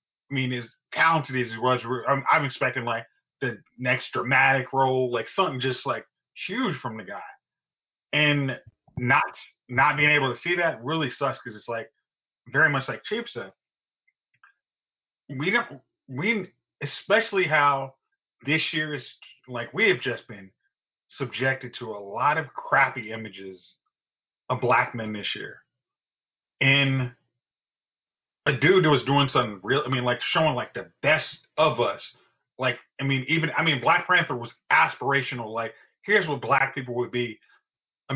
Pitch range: 125-160 Hz